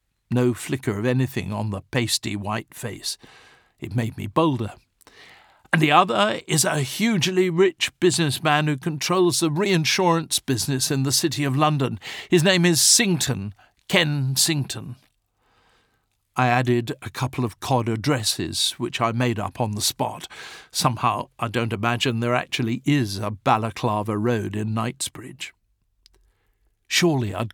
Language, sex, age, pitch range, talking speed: English, male, 50-69, 115-145 Hz, 140 wpm